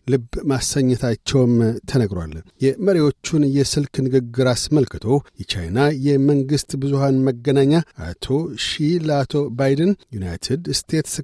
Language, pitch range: Amharic, 125-145 Hz